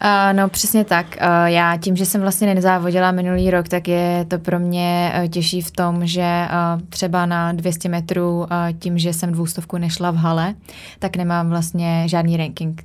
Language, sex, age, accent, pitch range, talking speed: Czech, female, 20-39, native, 170-180 Hz, 185 wpm